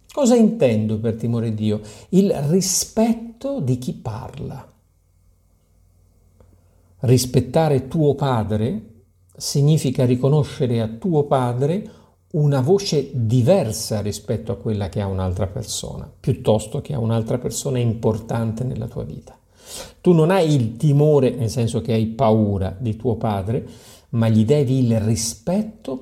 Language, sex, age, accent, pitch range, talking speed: Italian, male, 50-69, native, 105-140 Hz, 125 wpm